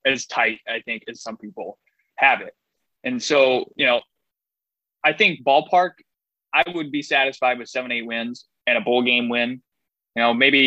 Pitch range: 120-160 Hz